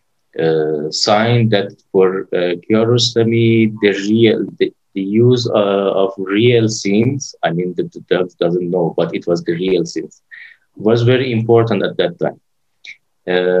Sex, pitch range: male, 90-115 Hz